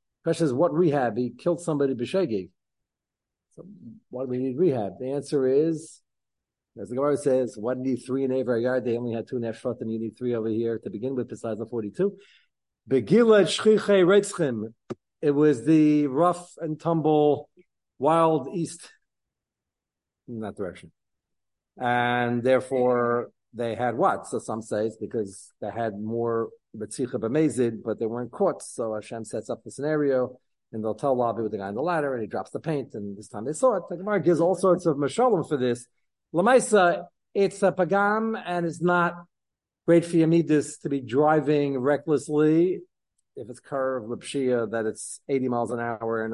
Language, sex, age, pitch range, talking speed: English, male, 50-69, 115-160 Hz, 170 wpm